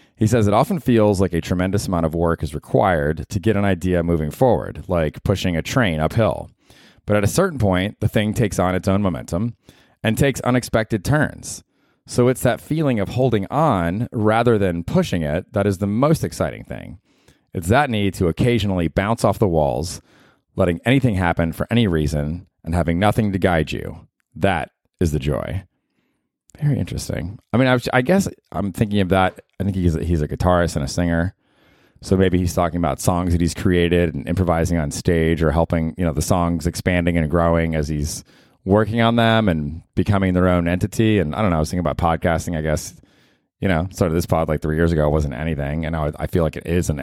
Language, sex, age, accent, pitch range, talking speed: English, male, 30-49, American, 85-110 Hz, 210 wpm